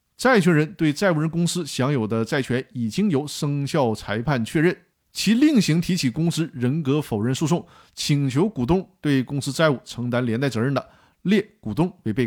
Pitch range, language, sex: 130-185 Hz, Chinese, male